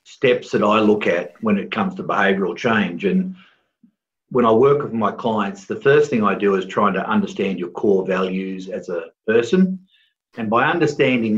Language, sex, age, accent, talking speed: English, male, 50-69, Australian, 190 wpm